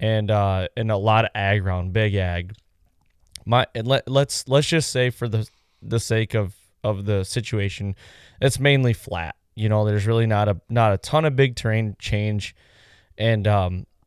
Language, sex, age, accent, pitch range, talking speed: English, male, 20-39, American, 100-120 Hz, 180 wpm